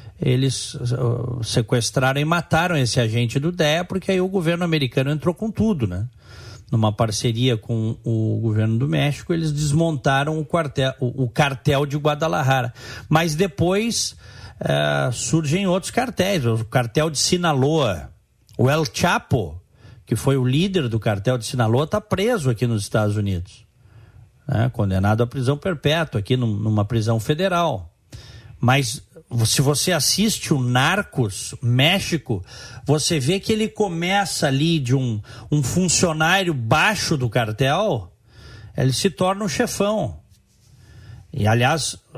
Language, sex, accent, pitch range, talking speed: Portuguese, male, Brazilian, 115-160 Hz, 130 wpm